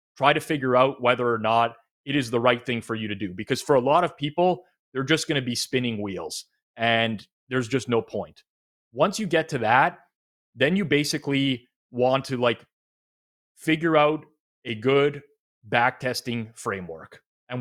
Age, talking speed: 30-49, 175 wpm